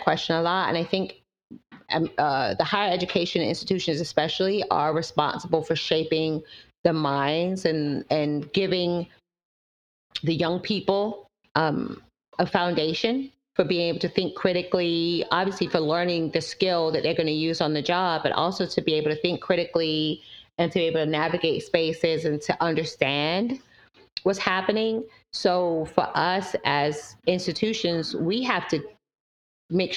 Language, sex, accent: English, female, American